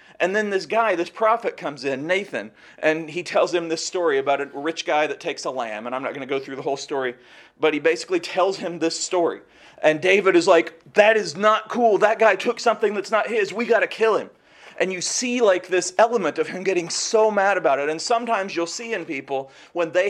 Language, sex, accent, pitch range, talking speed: English, male, American, 165-210 Hz, 240 wpm